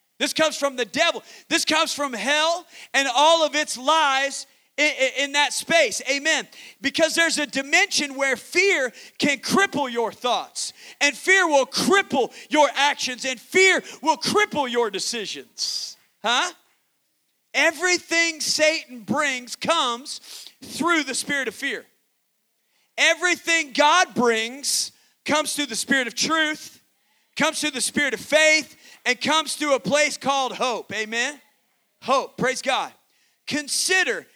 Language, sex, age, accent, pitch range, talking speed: English, male, 40-59, American, 245-305 Hz, 140 wpm